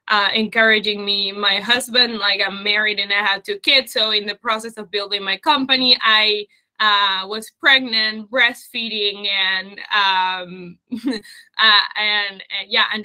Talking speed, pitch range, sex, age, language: 150 wpm, 210-255 Hz, female, 20-39, English